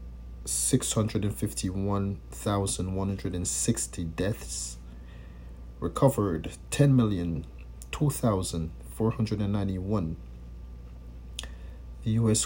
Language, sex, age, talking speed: English, male, 50-69, 105 wpm